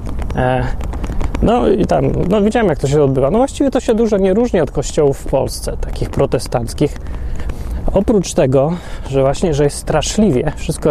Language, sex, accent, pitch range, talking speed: Polish, male, native, 130-175 Hz, 165 wpm